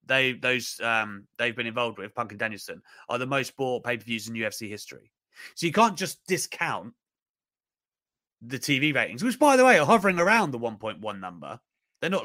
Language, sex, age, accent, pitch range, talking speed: English, male, 30-49, British, 120-165 Hz, 185 wpm